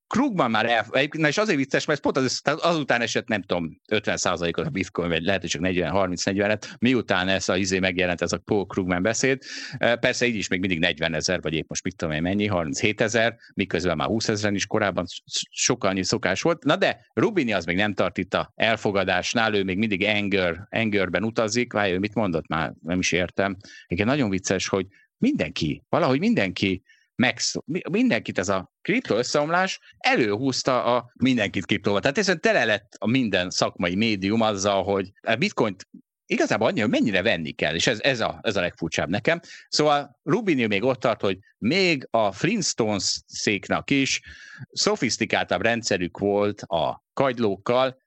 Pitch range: 95-120 Hz